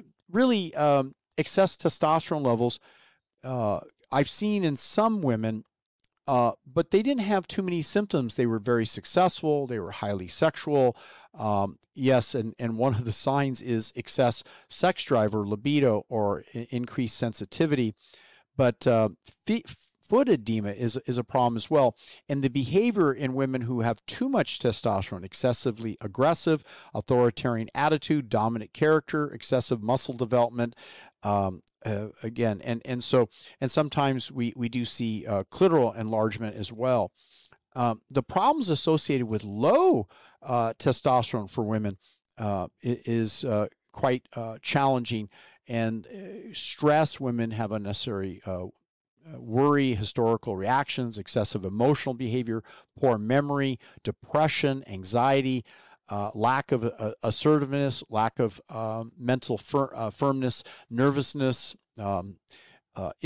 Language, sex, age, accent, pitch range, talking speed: English, male, 50-69, American, 110-140 Hz, 130 wpm